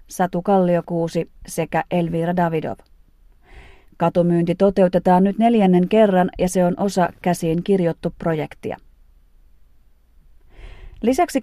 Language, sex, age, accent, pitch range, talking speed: Finnish, female, 30-49, native, 170-195 Hz, 95 wpm